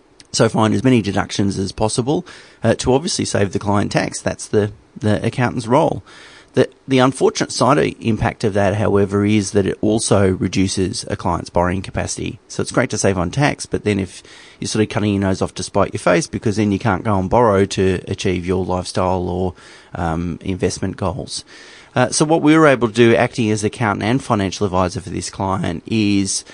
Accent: Australian